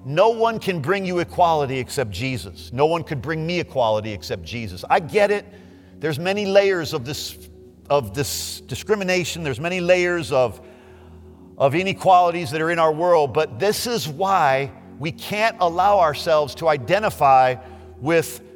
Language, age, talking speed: English, 50-69, 160 wpm